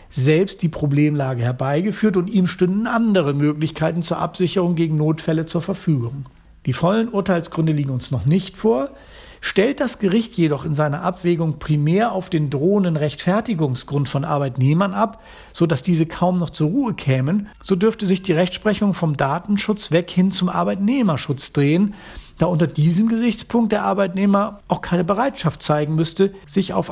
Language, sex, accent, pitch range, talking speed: German, male, German, 150-195 Hz, 160 wpm